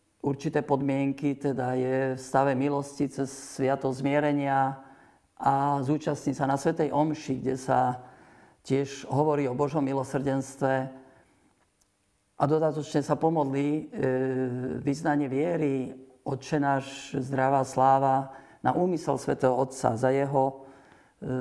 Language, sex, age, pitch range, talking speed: Slovak, male, 50-69, 130-145 Hz, 110 wpm